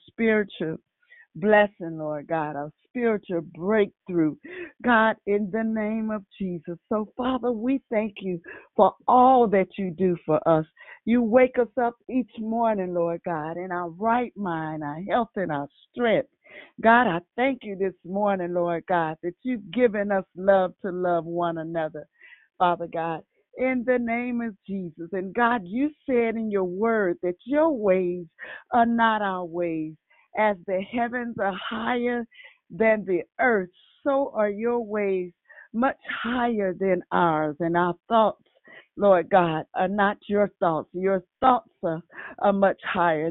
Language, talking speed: English, 155 wpm